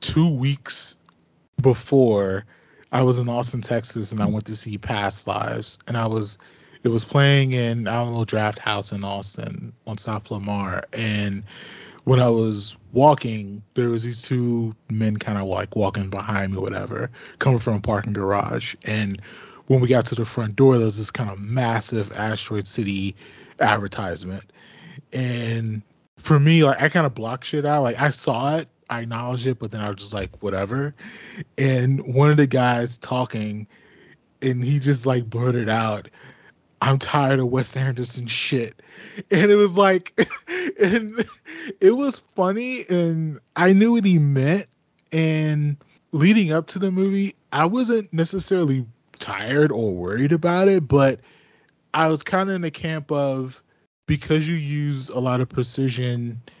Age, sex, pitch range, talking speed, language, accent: 20-39, male, 110-150 Hz, 165 wpm, English, American